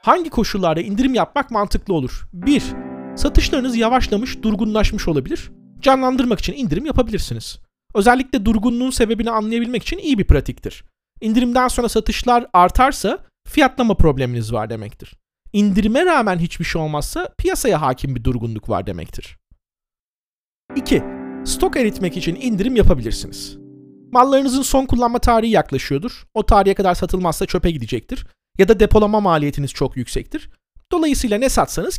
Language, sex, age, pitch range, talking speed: Turkish, male, 40-59, 165-255 Hz, 130 wpm